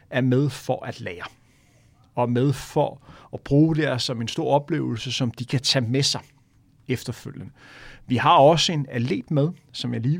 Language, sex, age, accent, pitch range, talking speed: Danish, male, 30-49, native, 125-150 Hz, 190 wpm